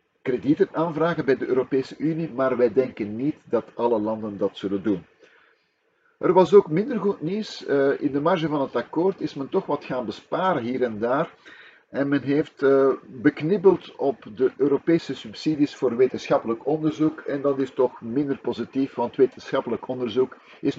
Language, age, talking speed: Dutch, 50-69, 165 wpm